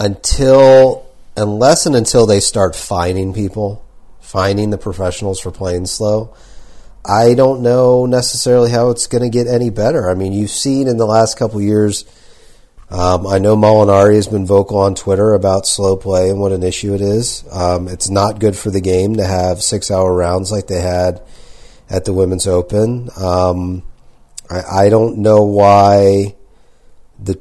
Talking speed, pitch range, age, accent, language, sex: 170 wpm, 95-110 Hz, 40-59, American, English, male